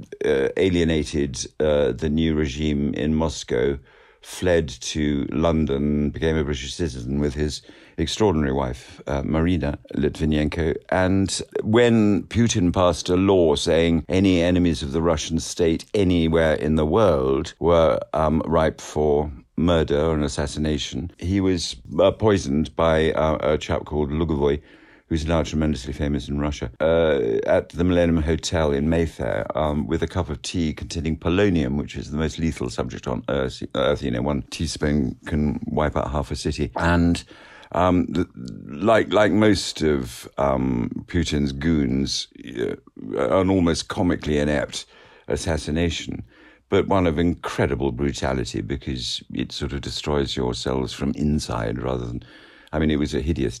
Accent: British